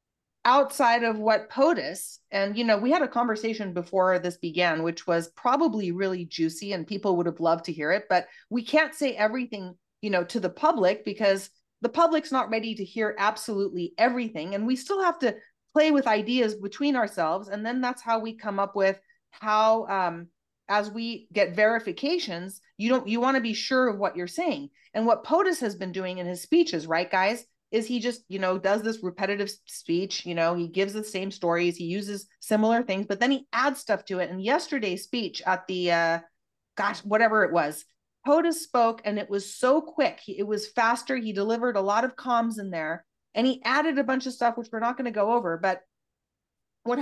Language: English